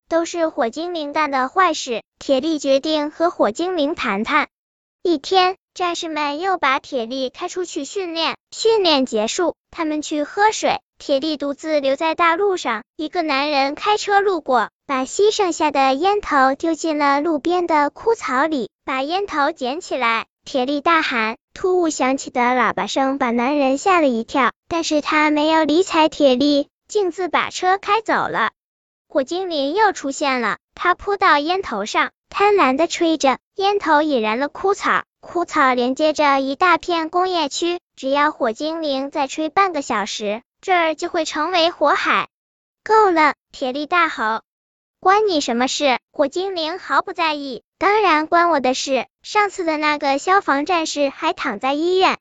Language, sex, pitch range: Chinese, male, 275-350 Hz